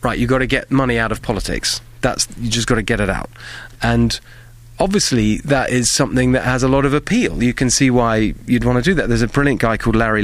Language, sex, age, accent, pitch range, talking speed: English, male, 30-49, British, 105-125 Hz, 250 wpm